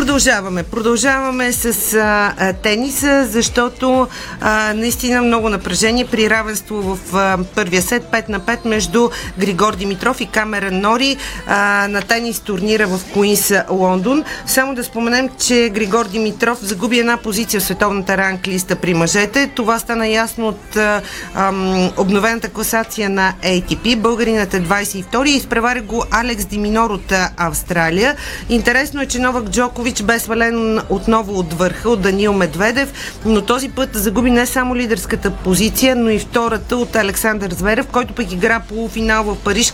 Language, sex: Bulgarian, female